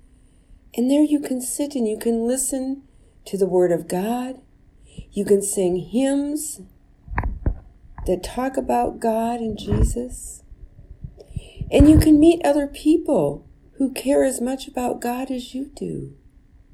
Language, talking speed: English, 140 wpm